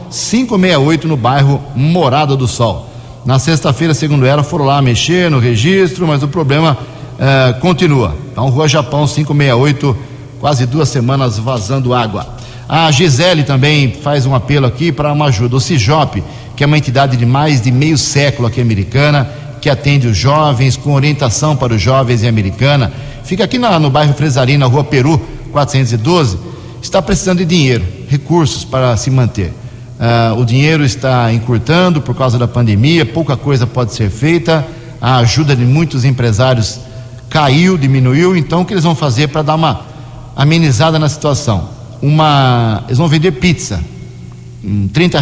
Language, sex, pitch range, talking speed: Portuguese, male, 125-155 Hz, 160 wpm